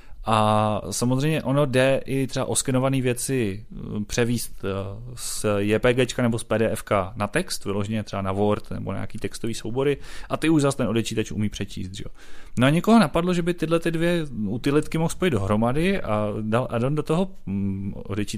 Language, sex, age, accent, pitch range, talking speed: Czech, male, 30-49, native, 110-155 Hz, 170 wpm